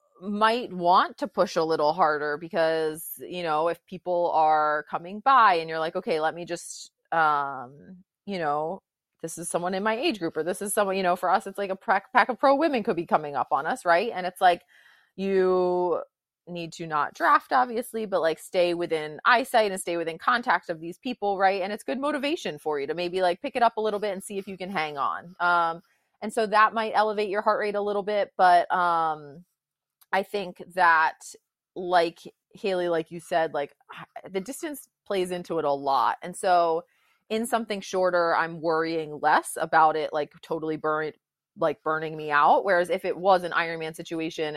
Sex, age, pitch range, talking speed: female, 30-49, 160-205 Hz, 205 wpm